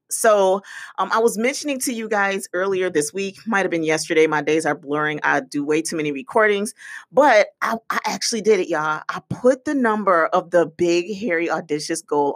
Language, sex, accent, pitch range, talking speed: English, female, American, 160-235 Hz, 200 wpm